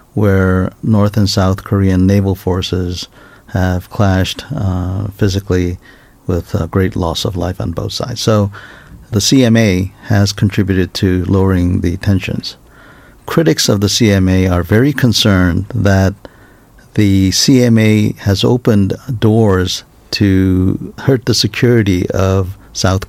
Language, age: Korean, 50-69